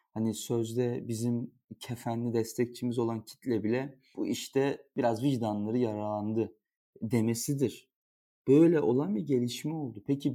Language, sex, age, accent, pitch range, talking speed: Turkish, male, 40-59, native, 110-140 Hz, 115 wpm